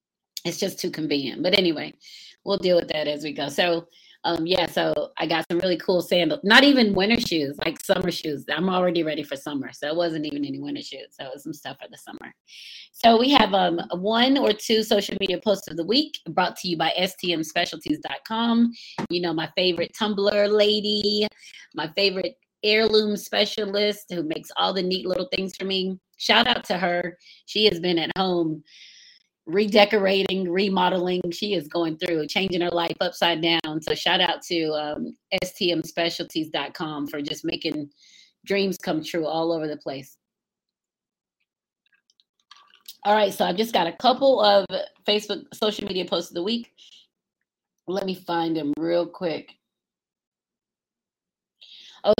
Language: English